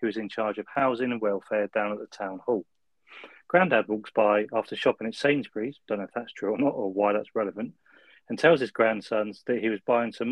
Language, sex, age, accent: English, male, 30-49, British